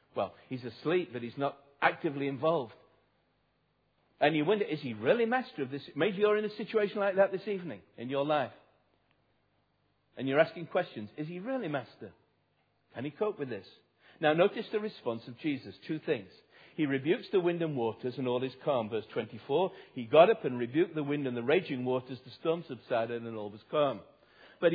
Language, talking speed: English, 195 wpm